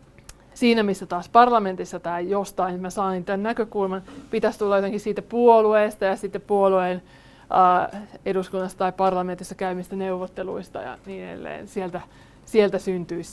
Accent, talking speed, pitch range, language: native, 140 wpm, 185-200 Hz, Finnish